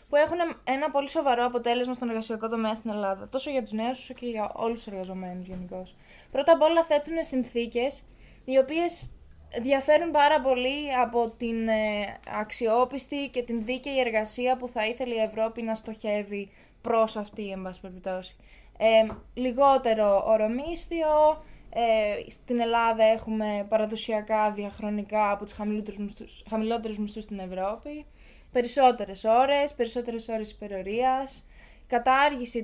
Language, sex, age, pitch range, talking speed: Greek, female, 20-39, 210-260 Hz, 130 wpm